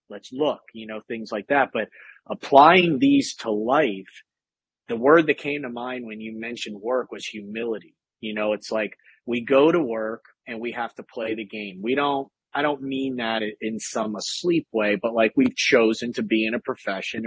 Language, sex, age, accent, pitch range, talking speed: English, male, 40-59, American, 110-130 Hz, 200 wpm